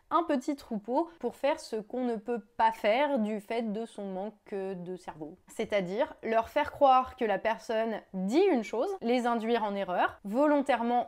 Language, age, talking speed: French, 20-39, 190 wpm